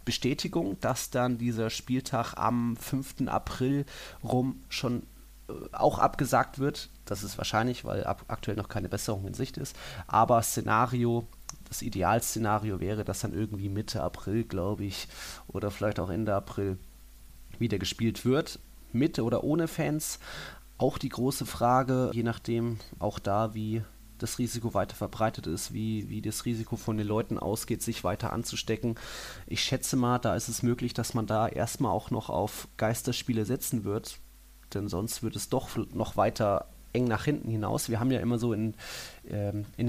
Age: 30-49